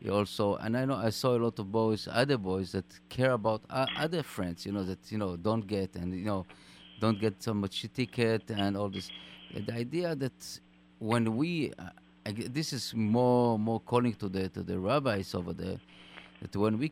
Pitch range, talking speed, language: 95-120 Hz, 210 wpm, English